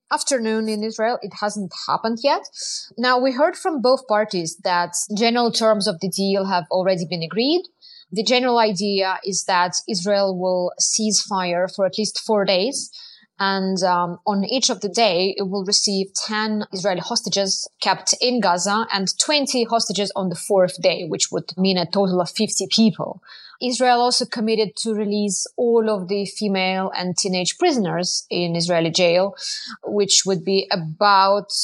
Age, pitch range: 20-39, 180-225 Hz